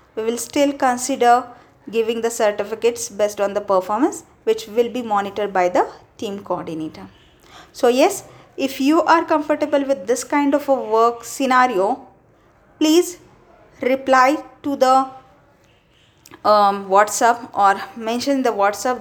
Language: English